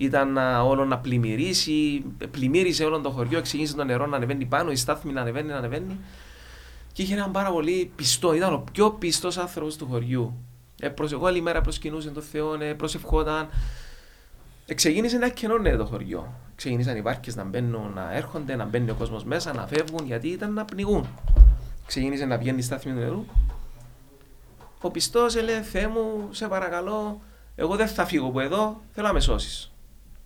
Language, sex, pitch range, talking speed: Greek, male, 130-205 Hz, 170 wpm